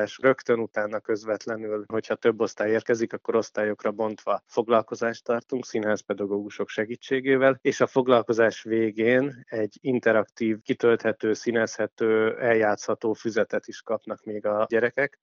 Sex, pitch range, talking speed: male, 110-125 Hz, 115 wpm